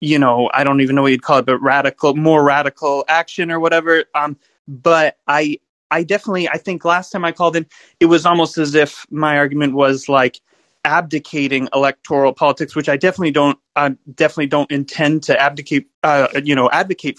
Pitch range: 135-155 Hz